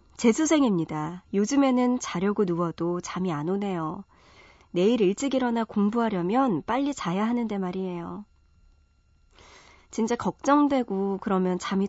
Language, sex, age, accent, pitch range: Korean, male, 40-59, native, 175-245 Hz